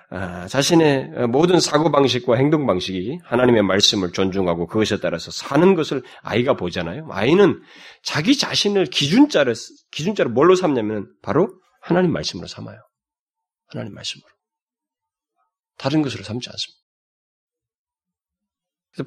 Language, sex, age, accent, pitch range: Korean, male, 30-49, native, 105-170 Hz